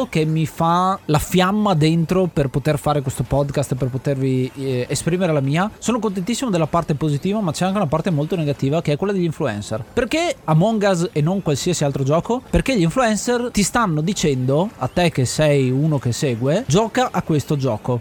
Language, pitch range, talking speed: Italian, 145-195 Hz, 195 wpm